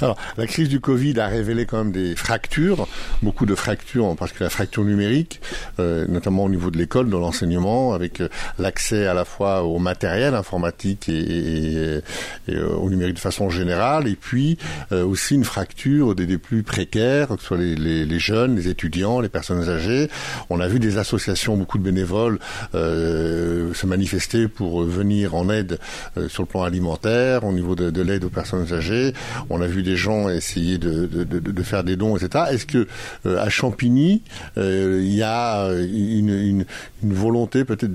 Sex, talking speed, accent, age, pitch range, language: male, 195 wpm, French, 60-79, 90-115 Hz, French